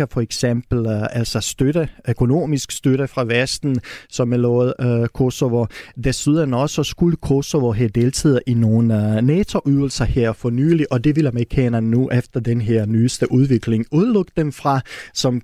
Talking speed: 165 wpm